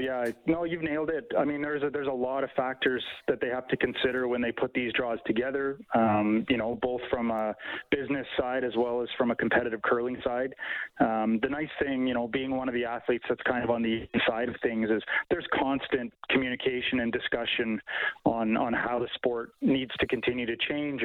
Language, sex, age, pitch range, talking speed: English, male, 30-49, 120-140 Hz, 215 wpm